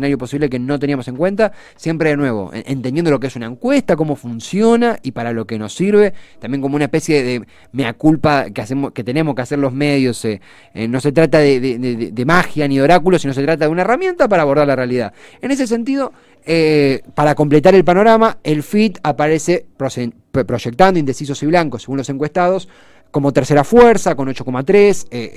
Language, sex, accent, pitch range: Spanish, male, Argentinian, 135-180 Hz